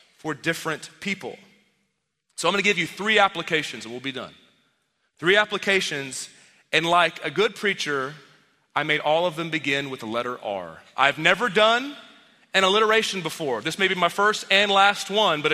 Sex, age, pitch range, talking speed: male, 30-49, 145-205 Hz, 180 wpm